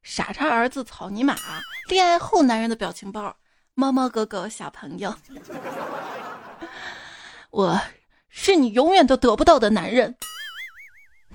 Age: 20-39